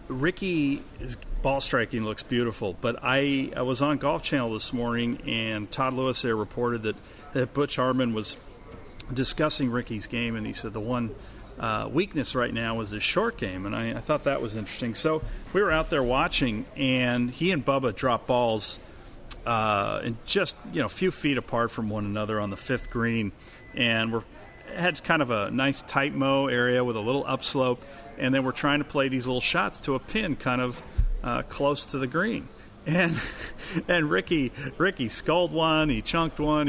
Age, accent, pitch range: 40-59, American, 115-140 Hz